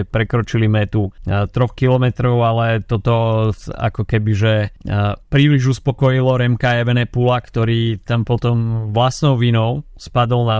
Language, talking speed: Slovak, 115 wpm